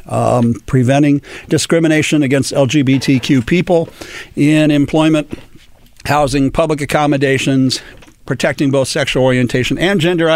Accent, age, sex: American, 50-69, male